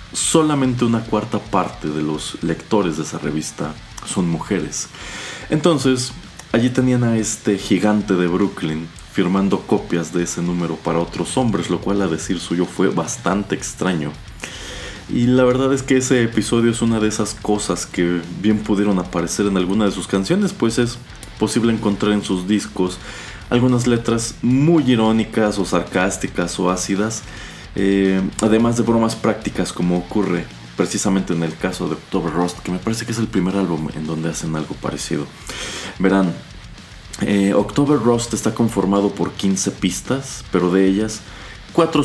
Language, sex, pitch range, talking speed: Spanish, male, 90-115 Hz, 160 wpm